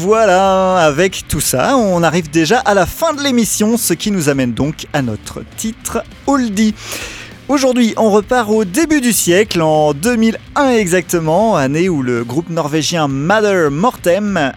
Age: 40-59